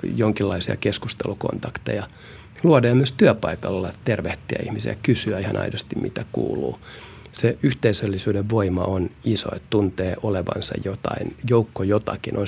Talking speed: 115 wpm